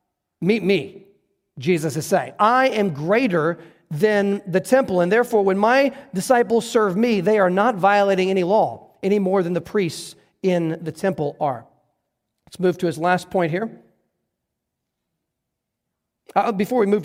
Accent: American